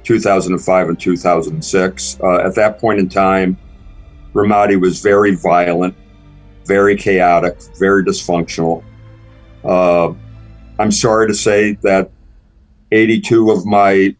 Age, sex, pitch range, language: 50-69, male, 95-115 Hz, English